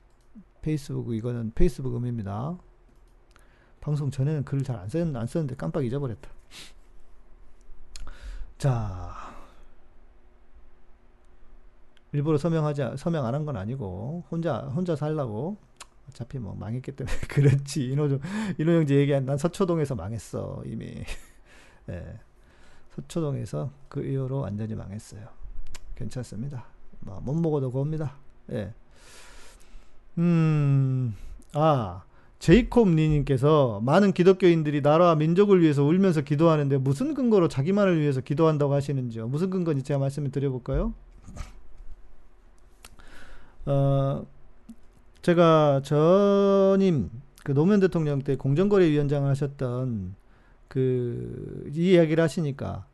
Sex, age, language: male, 40-59, Korean